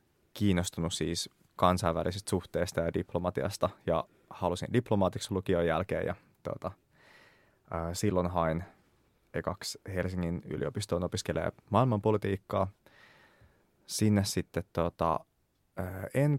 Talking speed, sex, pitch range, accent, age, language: 75 wpm, male, 90-110 Hz, native, 20-39, Finnish